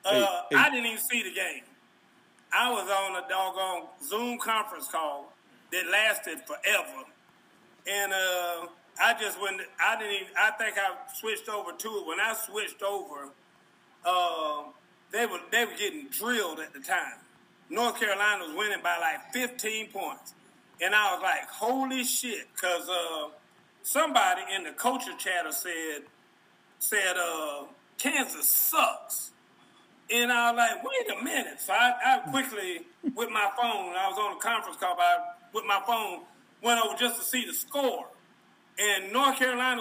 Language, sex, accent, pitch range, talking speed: English, male, American, 190-250 Hz, 165 wpm